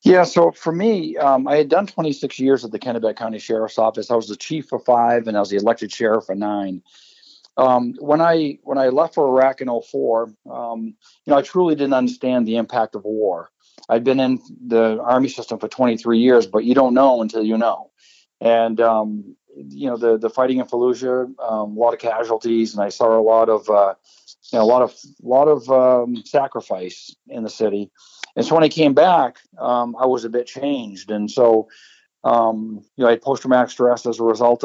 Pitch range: 110-130 Hz